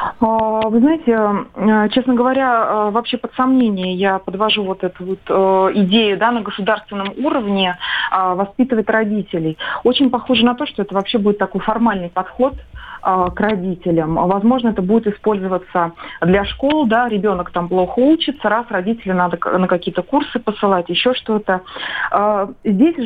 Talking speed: 140 wpm